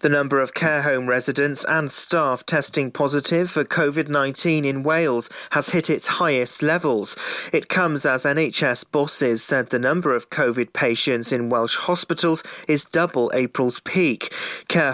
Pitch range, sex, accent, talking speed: 130-160 Hz, male, British, 155 wpm